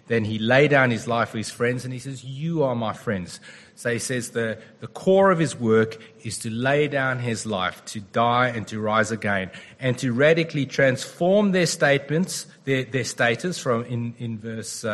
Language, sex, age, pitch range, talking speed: English, male, 30-49, 110-135 Hz, 200 wpm